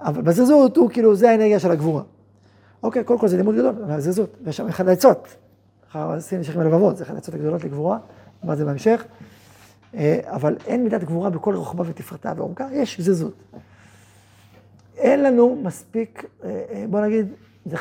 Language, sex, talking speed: Hebrew, male, 175 wpm